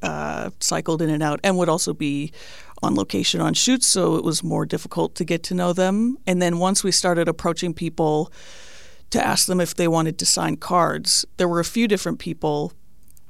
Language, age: English, 30-49